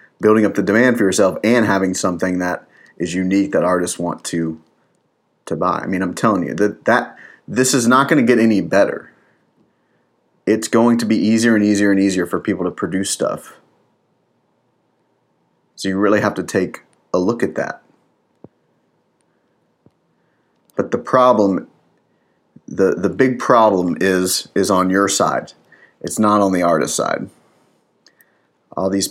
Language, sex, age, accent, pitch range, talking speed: English, male, 30-49, American, 95-110 Hz, 160 wpm